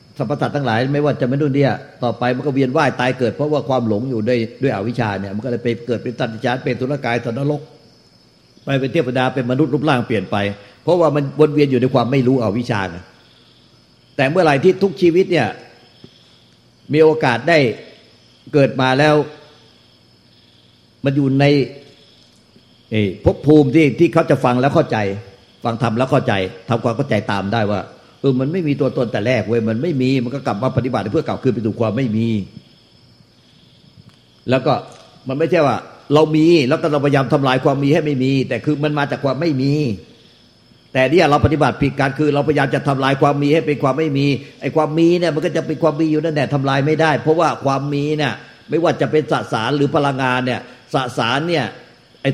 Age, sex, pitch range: 60-79, male, 120-150 Hz